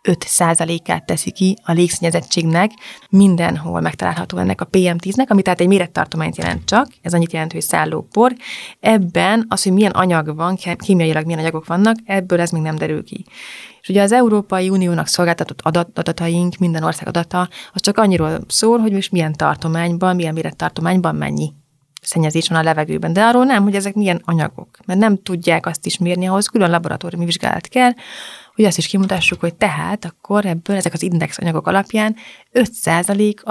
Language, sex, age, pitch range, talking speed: Hungarian, female, 20-39, 170-200 Hz, 170 wpm